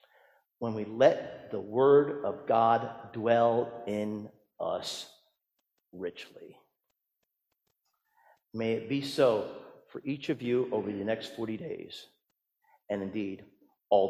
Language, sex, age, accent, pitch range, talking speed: English, male, 50-69, American, 115-160 Hz, 115 wpm